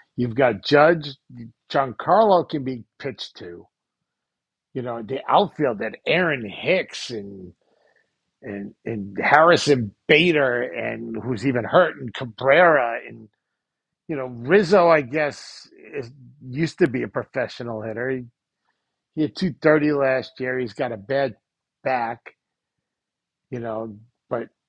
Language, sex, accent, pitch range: English, male, American, 120-160 Hz